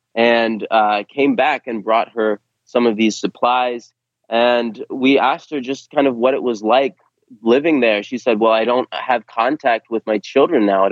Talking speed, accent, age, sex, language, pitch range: 200 wpm, American, 20-39, male, English, 105-120 Hz